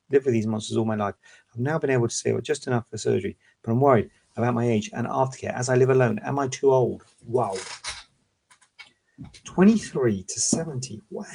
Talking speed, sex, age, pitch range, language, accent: 195 wpm, male, 40-59, 110-125 Hz, English, British